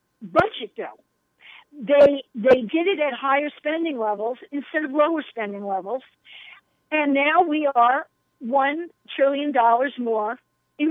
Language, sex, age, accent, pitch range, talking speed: English, female, 50-69, American, 240-315 Hz, 125 wpm